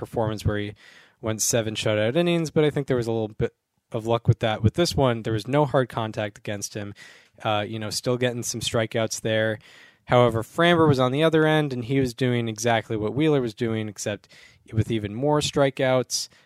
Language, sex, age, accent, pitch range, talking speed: English, male, 20-39, American, 110-140 Hz, 210 wpm